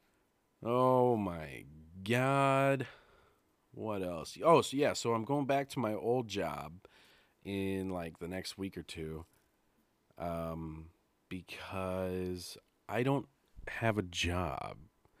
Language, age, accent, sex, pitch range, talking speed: English, 30-49, American, male, 90-135 Hz, 120 wpm